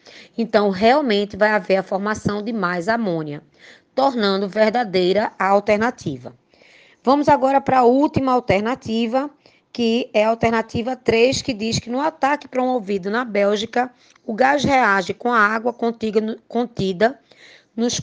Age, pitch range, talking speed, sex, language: 20-39, 200-250 Hz, 135 wpm, female, Portuguese